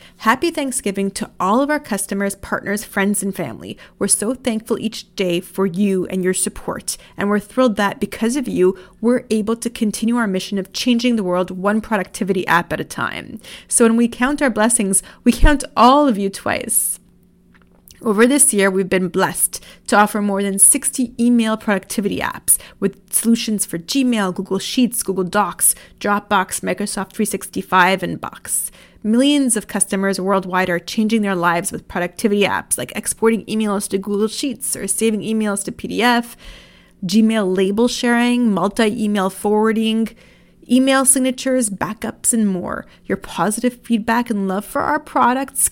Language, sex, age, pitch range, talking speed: English, female, 30-49, 195-235 Hz, 160 wpm